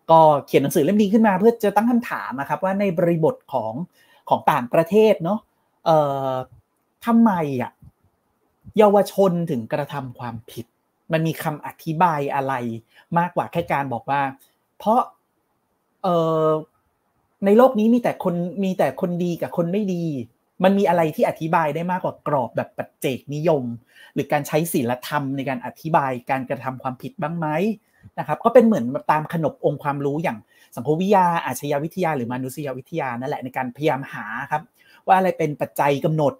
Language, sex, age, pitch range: Thai, male, 30-49, 135-185 Hz